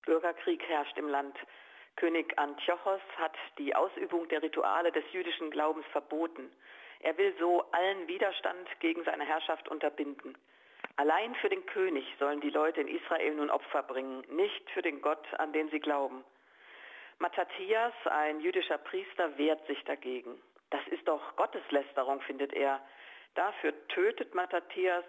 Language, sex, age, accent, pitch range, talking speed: German, female, 50-69, German, 150-185 Hz, 145 wpm